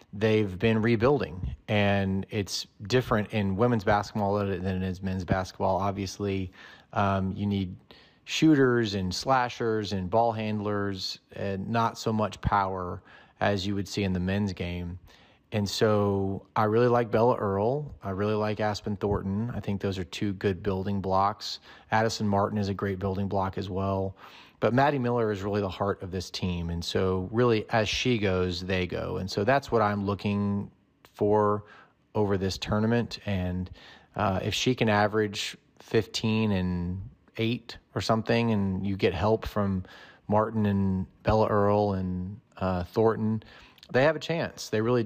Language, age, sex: English, 30-49, male